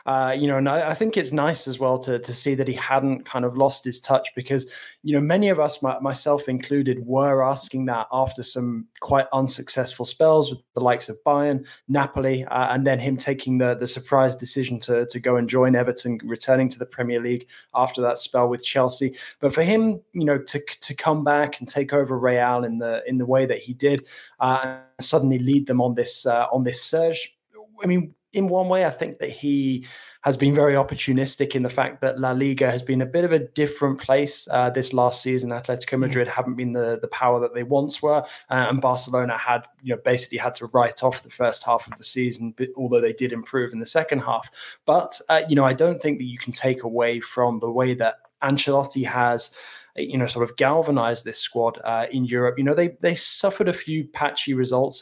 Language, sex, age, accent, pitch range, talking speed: English, male, 20-39, British, 125-140 Hz, 225 wpm